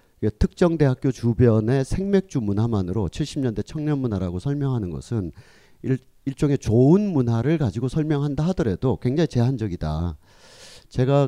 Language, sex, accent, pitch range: Korean, male, native, 105-140 Hz